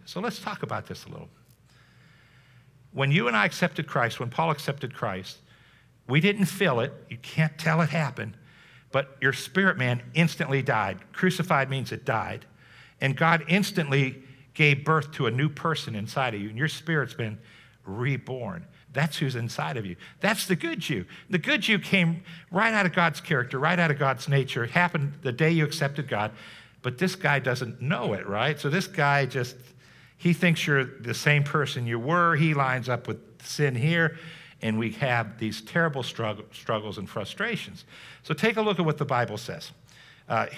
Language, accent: English, American